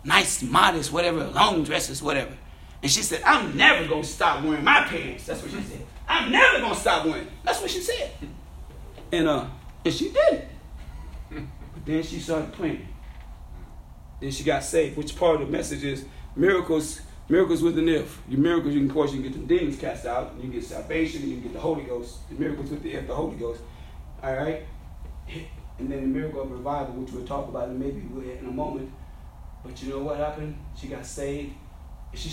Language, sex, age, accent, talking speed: English, male, 30-49, American, 215 wpm